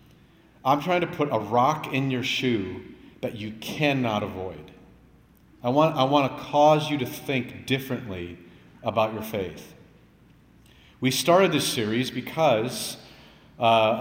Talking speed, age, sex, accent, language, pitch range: 135 wpm, 40-59, male, American, English, 120-155 Hz